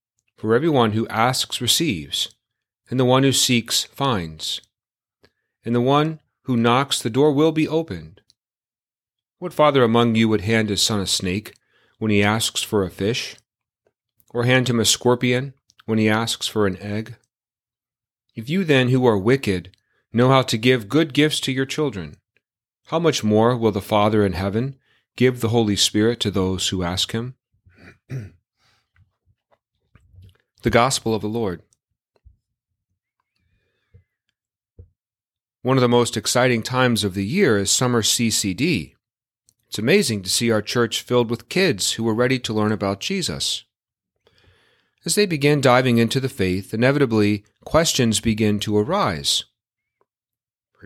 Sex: male